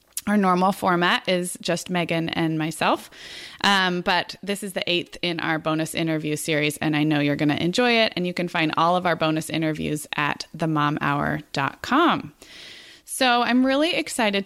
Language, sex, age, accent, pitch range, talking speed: English, female, 20-39, American, 170-210 Hz, 175 wpm